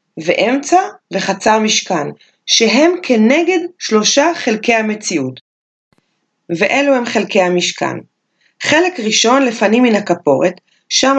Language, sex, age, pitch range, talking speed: Hebrew, female, 30-49, 180-250 Hz, 95 wpm